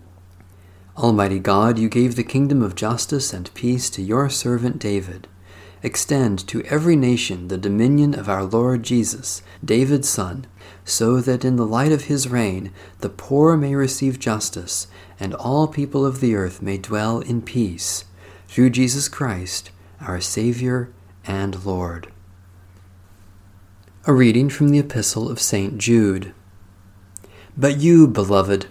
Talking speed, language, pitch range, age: 140 wpm, English, 95-125 Hz, 40-59